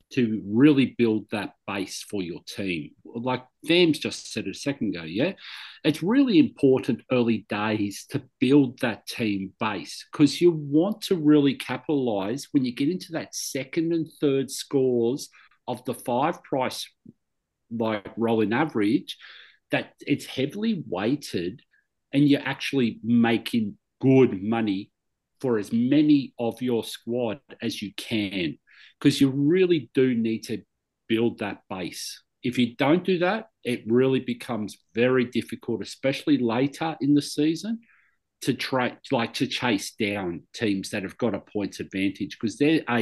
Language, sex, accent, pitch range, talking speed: English, male, Australian, 115-150 Hz, 150 wpm